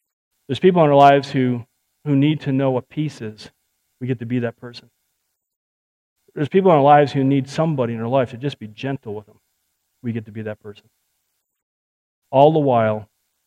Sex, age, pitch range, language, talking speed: male, 40-59, 110-170 Hz, English, 205 wpm